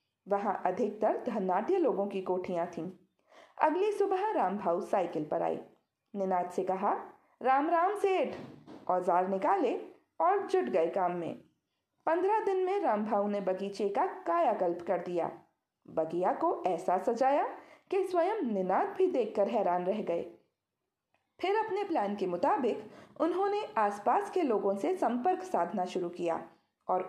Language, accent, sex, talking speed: Hindi, native, female, 135 wpm